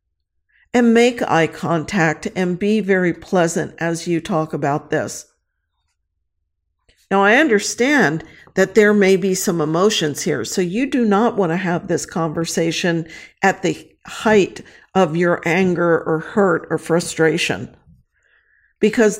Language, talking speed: English, 135 wpm